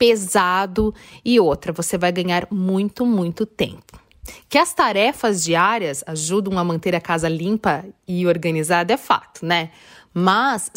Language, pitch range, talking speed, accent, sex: Portuguese, 180-245 Hz, 140 wpm, Brazilian, female